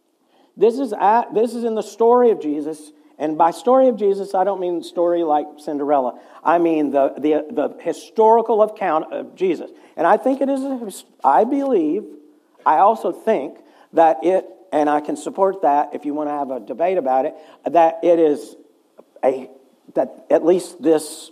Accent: American